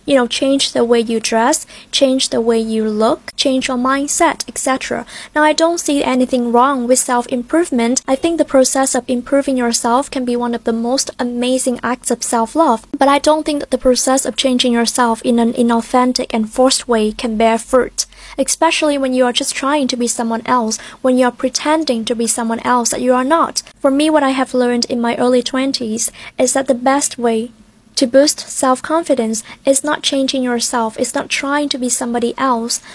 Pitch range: 240-275 Hz